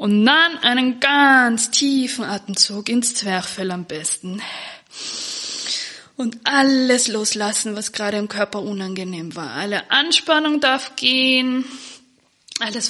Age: 20-39